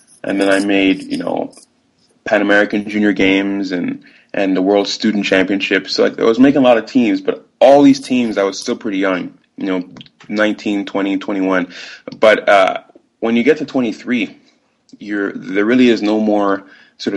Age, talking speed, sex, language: 20-39, 185 wpm, male, English